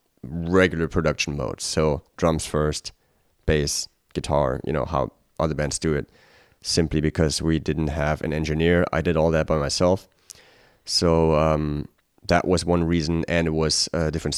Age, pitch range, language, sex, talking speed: 30-49, 75-90 Hz, English, male, 165 wpm